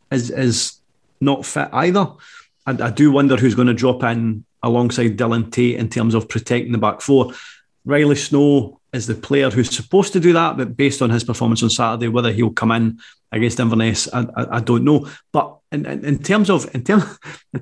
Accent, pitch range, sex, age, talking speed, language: British, 120-150 Hz, male, 30-49, 200 wpm, English